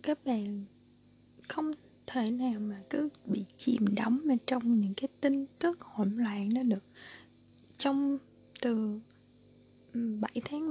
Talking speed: 130 wpm